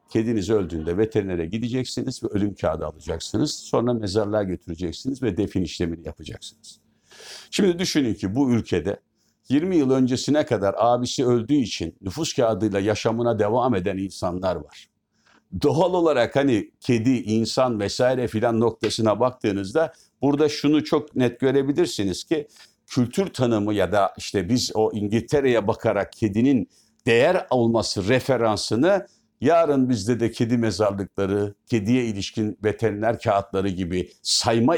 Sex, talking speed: male, 125 wpm